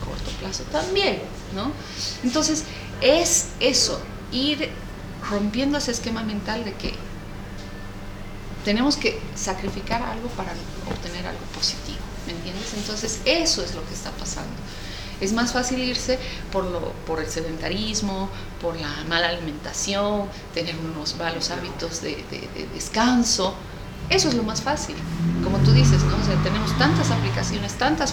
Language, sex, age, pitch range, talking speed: English, female, 30-49, 155-230 Hz, 145 wpm